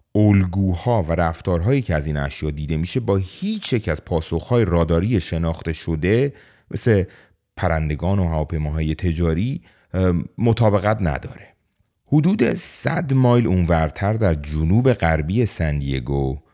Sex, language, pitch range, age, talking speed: male, Persian, 80-110 Hz, 30-49, 115 wpm